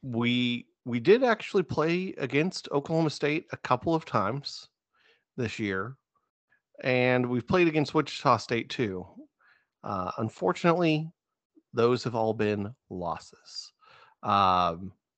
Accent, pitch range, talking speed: American, 100-135 Hz, 115 wpm